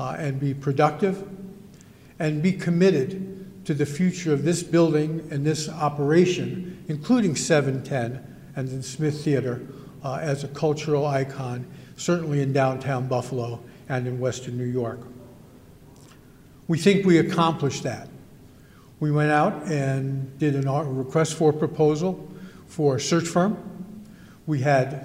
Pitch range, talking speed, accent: 135-165 Hz, 140 wpm, American